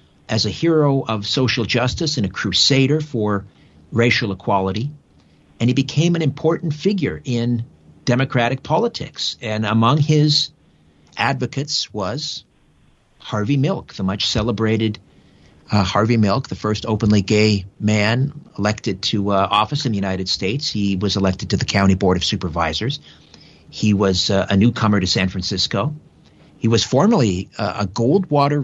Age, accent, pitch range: 50-69, American, 100-140 Hz